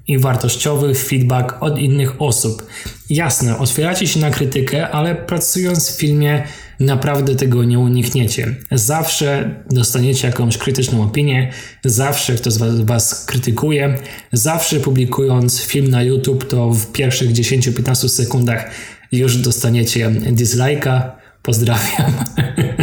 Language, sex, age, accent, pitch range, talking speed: Polish, male, 20-39, native, 115-135 Hz, 115 wpm